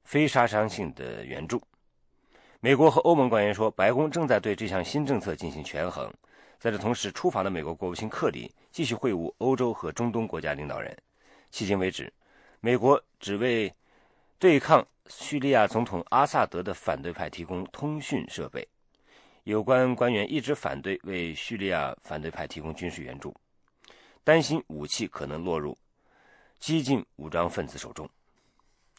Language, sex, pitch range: English, male, 85-120 Hz